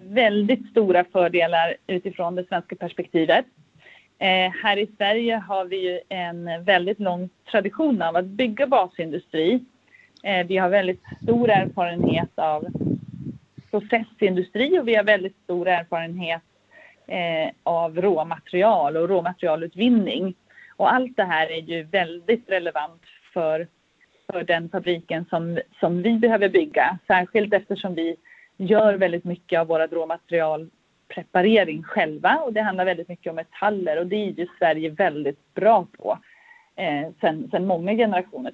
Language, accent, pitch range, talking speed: English, Swedish, 170-220 Hz, 135 wpm